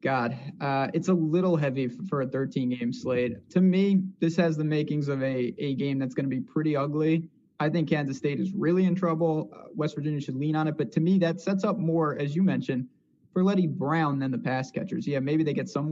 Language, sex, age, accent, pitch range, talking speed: English, male, 20-39, American, 140-175 Hz, 240 wpm